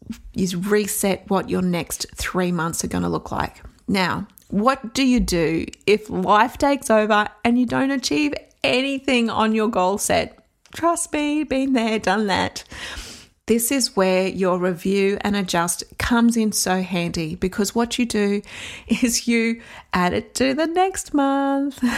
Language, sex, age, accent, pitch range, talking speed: English, female, 30-49, Australian, 190-240 Hz, 160 wpm